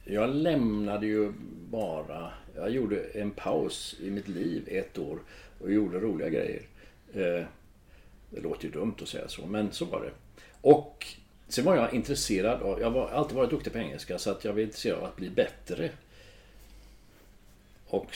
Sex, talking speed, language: male, 165 wpm, Swedish